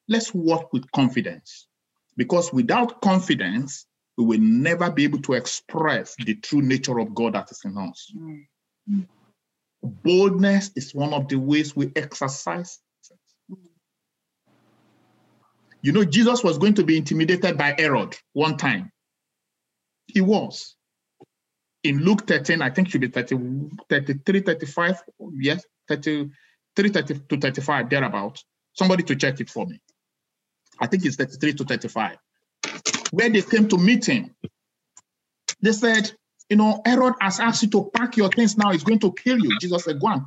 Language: English